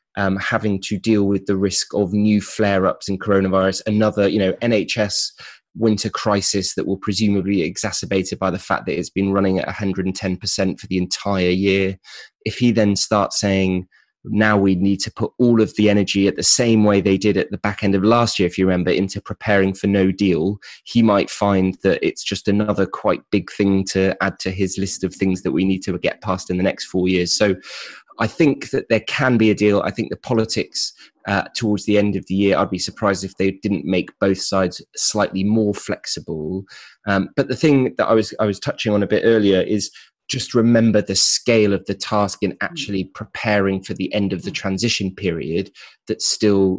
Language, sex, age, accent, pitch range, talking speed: English, male, 20-39, British, 95-105 Hz, 210 wpm